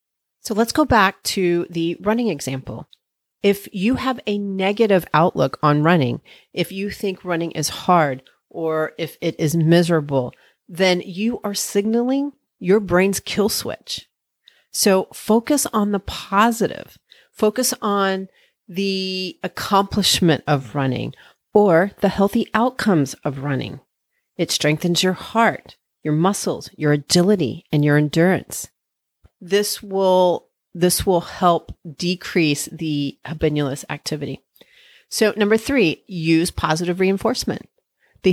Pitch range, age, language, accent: 160-205 Hz, 40-59, English, American